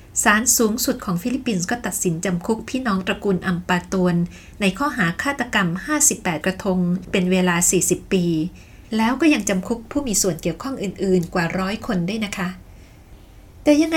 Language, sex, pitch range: Thai, female, 185-245 Hz